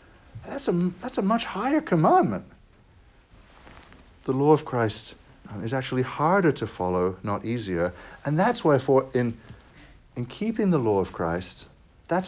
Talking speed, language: 150 wpm, English